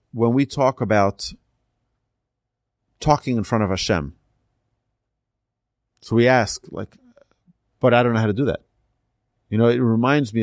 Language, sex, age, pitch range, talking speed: English, male, 40-59, 100-120 Hz, 150 wpm